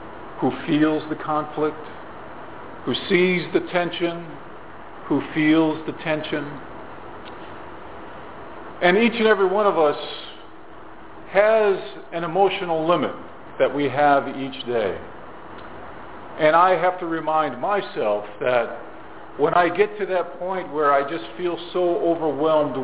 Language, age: English, 50-69